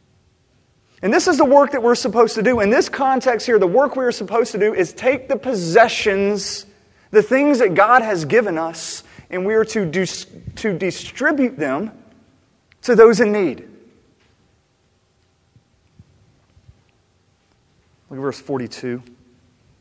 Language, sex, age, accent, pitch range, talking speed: English, male, 30-49, American, 115-180 Hz, 140 wpm